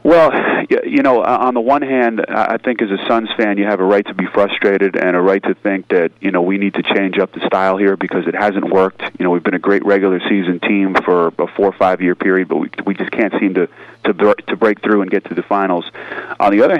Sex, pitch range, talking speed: male, 95-110 Hz, 270 wpm